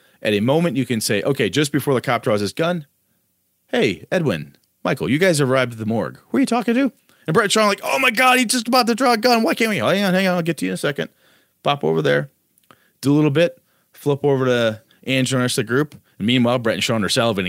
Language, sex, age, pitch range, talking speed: English, male, 30-49, 110-160 Hz, 275 wpm